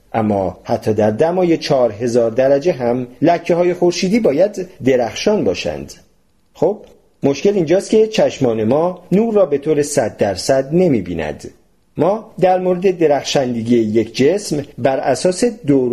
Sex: male